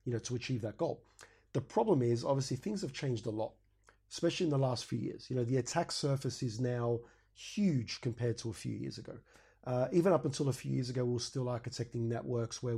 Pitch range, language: 115-135 Hz, English